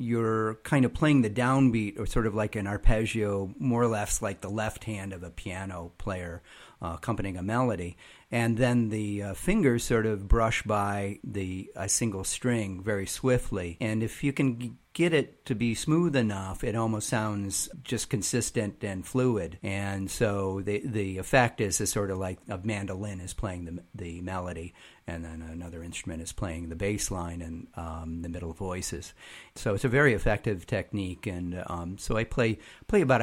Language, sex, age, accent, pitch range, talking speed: English, male, 40-59, American, 90-115 Hz, 185 wpm